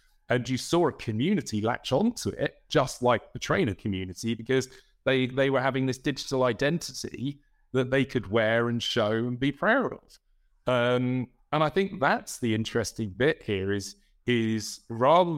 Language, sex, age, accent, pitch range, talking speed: English, male, 30-49, British, 110-140 Hz, 170 wpm